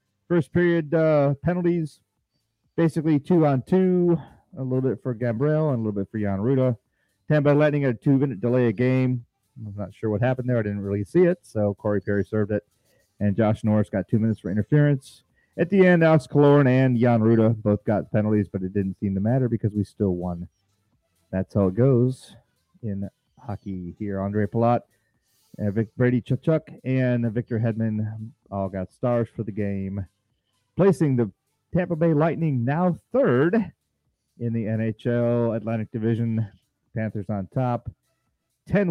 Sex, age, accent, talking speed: male, 40-59, American, 170 wpm